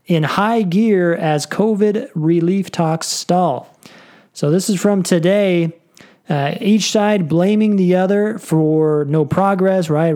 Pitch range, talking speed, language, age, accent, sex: 160-205 Hz, 135 wpm, English, 30-49, American, male